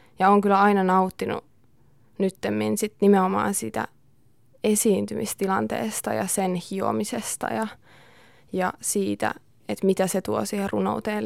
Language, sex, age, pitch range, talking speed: Finnish, female, 20-39, 185-220 Hz, 115 wpm